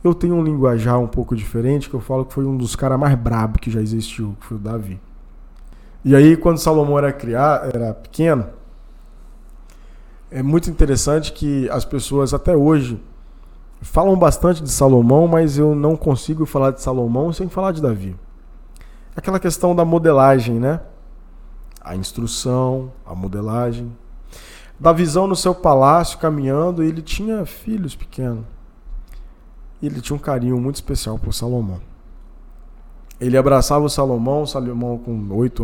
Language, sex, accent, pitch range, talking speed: Portuguese, male, Brazilian, 105-145 Hz, 150 wpm